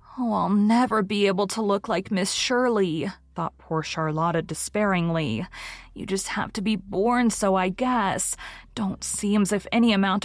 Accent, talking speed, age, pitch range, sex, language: American, 165 wpm, 30-49, 170-215 Hz, female, English